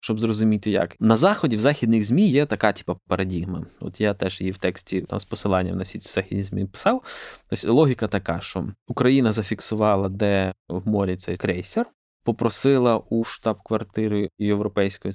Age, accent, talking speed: 20-39, native, 165 wpm